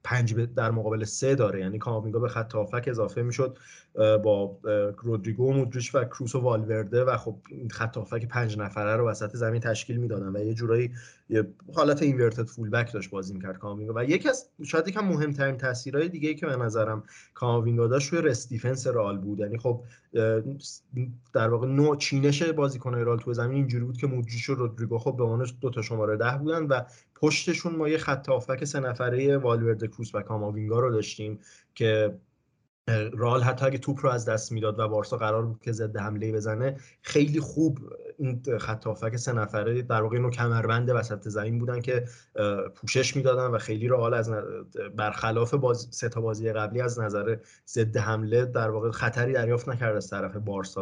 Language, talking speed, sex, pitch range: English, 180 wpm, male, 110-130 Hz